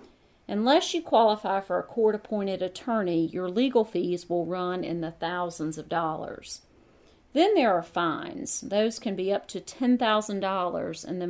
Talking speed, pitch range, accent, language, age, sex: 155 wpm, 175-230 Hz, American, English, 40-59, female